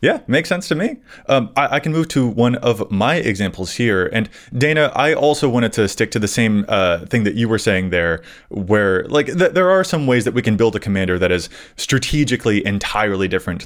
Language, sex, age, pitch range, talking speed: English, male, 20-39, 95-135 Hz, 225 wpm